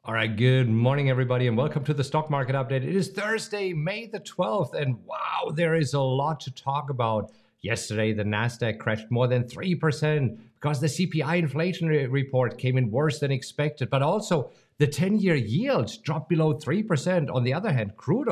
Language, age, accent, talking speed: English, 50-69, German, 185 wpm